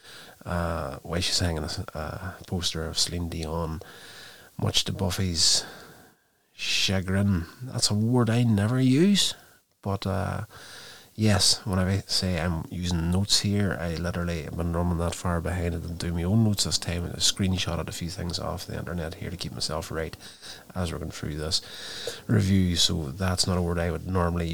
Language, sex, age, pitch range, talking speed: English, male, 30-49, 85-100 Hz, 180 wpm